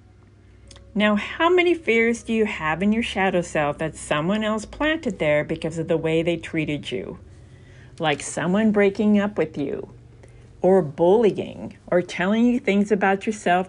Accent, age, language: American, 50-69, English